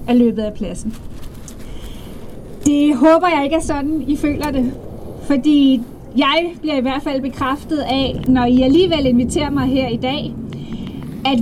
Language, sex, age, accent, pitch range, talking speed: English, female, 30-49, Danish, 245-300 Hz, 150 wpm